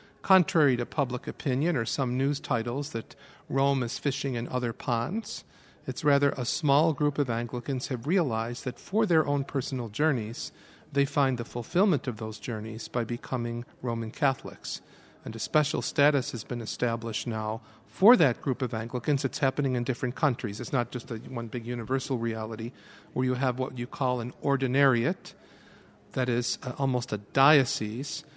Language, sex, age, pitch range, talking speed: English, male, 50-69, 120-140 Hz, 165 wpm